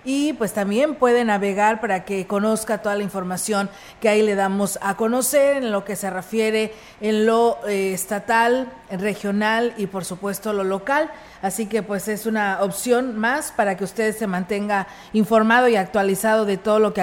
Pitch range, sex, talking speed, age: 190-225 Hz, female, 180 wpm, 40-59